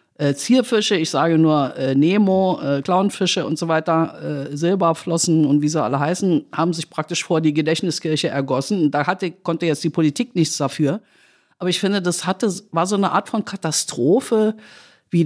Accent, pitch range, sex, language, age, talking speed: German, 155-190 Hz, female, German, 50-69, 185 wpm